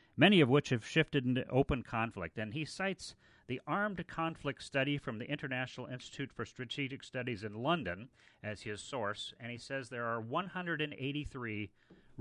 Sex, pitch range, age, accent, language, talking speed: male, 115-150 Hz, 40-59, American, English, 160 wpm